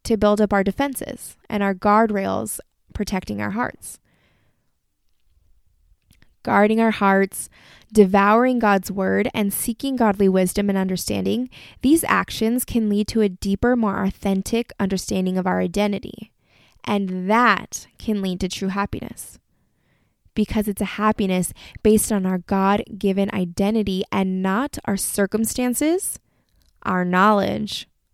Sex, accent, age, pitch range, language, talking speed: female, American, 20-39, 185-220 Hz, English, 125 wpm